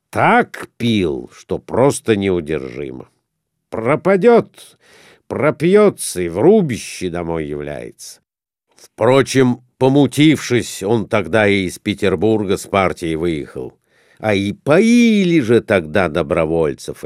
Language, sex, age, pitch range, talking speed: Russian, male, 60-79, 95-145 Hz, 95 wpm